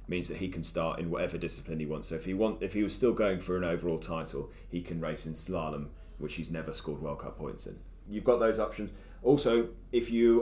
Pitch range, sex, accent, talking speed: 80-95 Hz, male, British, 250 wpm